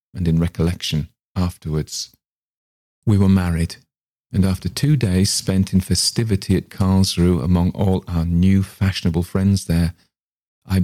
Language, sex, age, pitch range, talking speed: English, male, 50-69, 85-105 Hz, 135 wpm